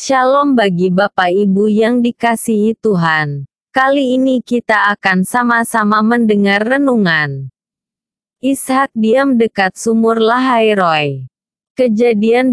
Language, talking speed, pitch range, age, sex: Indonesian, 100 wpm, 195-240 Hz, 20-39, female